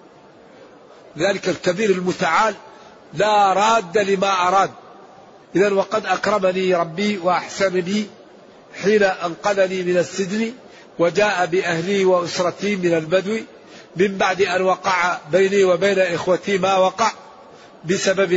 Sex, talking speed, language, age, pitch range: male, 100 wpm, Arabic, 50-69, 175-210 Hz